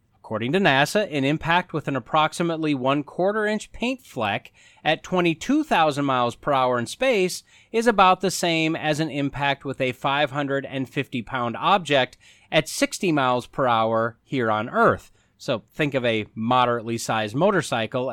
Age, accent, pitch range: 30-49, American, 115-170 Hz